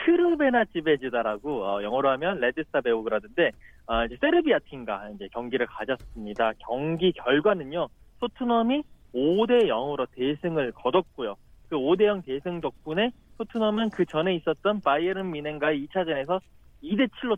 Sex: male